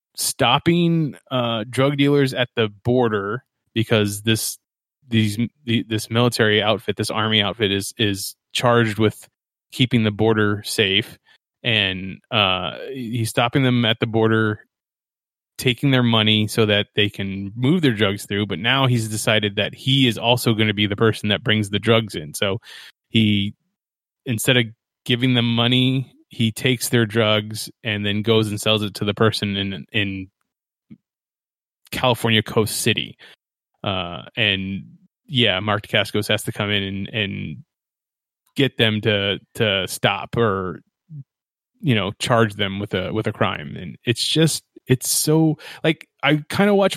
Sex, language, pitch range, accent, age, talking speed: male, English, 105-130 Hz, American, 20-39, 155 wpm